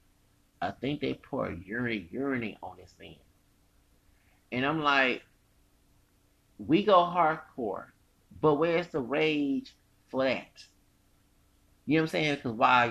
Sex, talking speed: male, 135 wpm